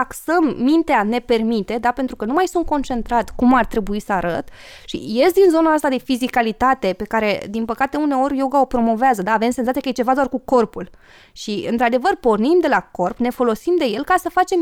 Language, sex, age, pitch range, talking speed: Romanian, female, 20-39, 225-300 Hz, 220 wpm